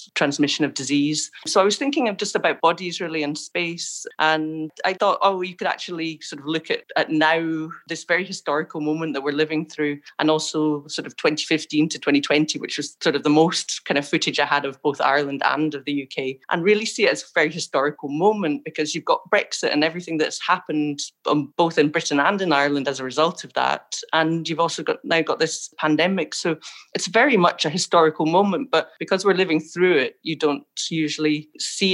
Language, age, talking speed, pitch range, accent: English, 30-49, 210 wpm, 150-180 Hz, British